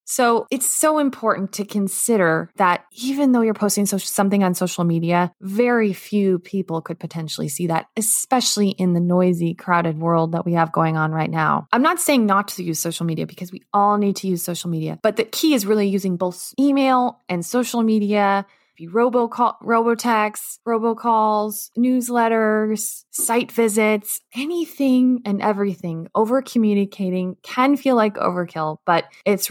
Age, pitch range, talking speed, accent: 20-39, 170-225 Hz, 160 wpm, American